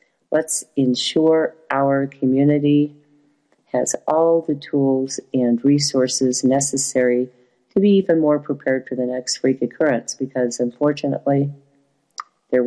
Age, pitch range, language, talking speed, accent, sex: 50-69, 130-155 Hz, English, 115 wpm, American, female